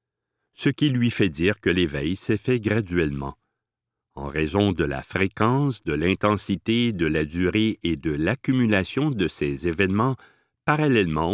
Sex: male